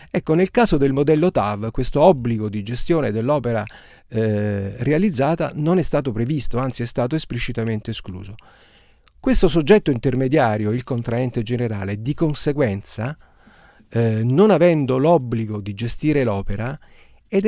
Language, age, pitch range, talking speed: Italian, 40-59, 110-150 Hz, 125 wpm